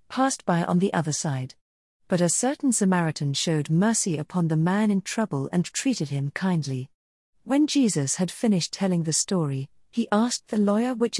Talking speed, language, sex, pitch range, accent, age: 175 wpm, English, female, 155-210 Hz, British, 40-59